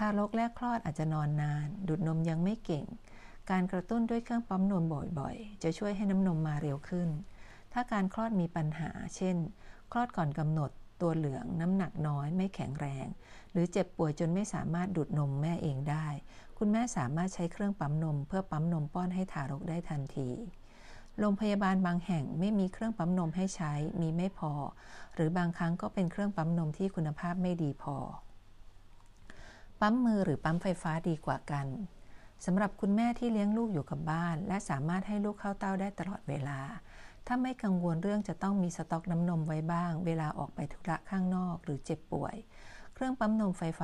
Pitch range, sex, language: 155-195 Hz, female, Thai